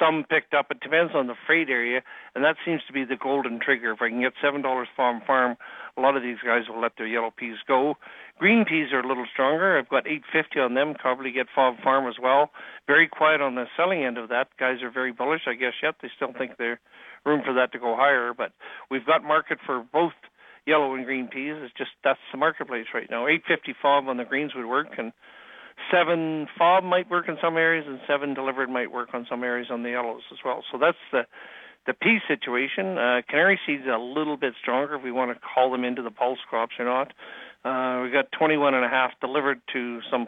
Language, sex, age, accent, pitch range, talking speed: English, male, 60-79, American, 125-155 Hz, 235 wpm